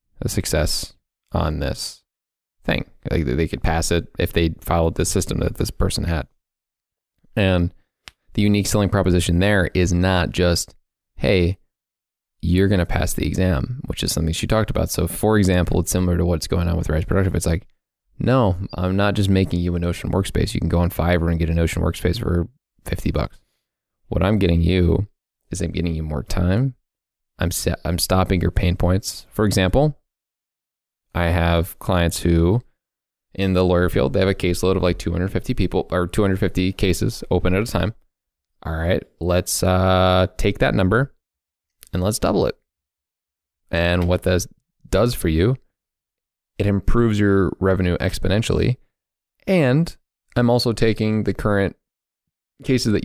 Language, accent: English, American